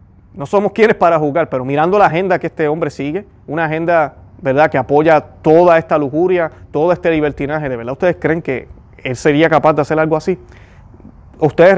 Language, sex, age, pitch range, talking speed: Spanish, male, 30-49, 135-170 Hz, 190 wpm